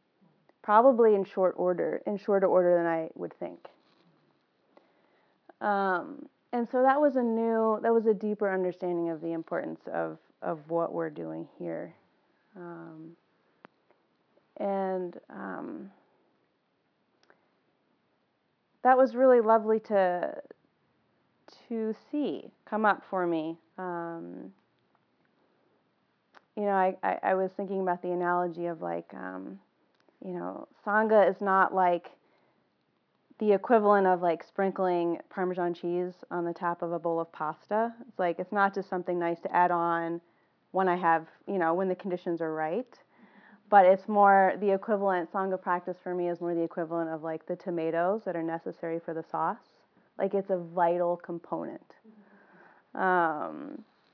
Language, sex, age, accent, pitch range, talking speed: English, female, 30-49, American, 170-205 Hz, 145 wpm